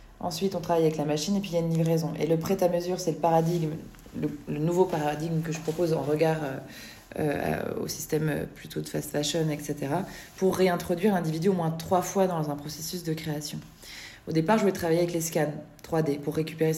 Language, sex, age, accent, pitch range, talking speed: French, female, 20-39, French, 150-175 Hz, 210 wpm